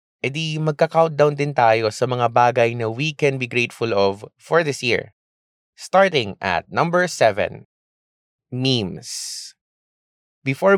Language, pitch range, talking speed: English, 100-130 Hz, 130 wpm